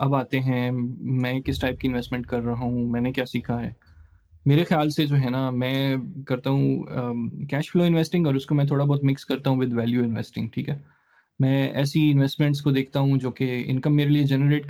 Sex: male